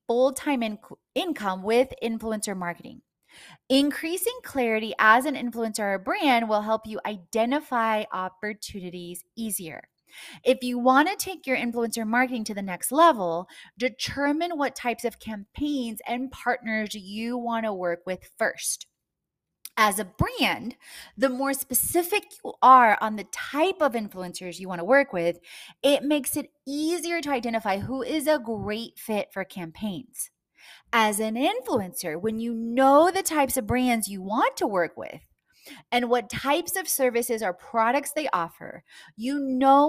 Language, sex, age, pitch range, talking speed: English, female, 20-39, 210-275 Hz, 150 wpm